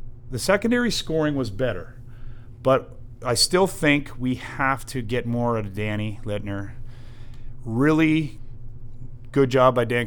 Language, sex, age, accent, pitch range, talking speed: English, male, 30-49, American, 110-125 Hz, 135 wpm